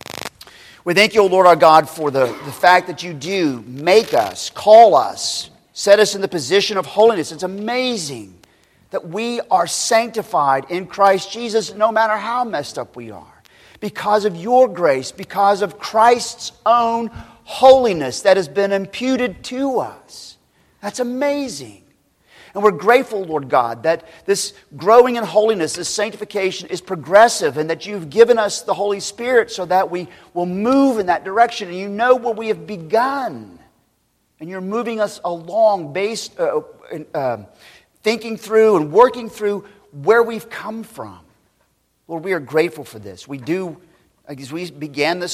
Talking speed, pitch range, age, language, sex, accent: 165 wpm, 155-220 Hz, 40-59, English, male, American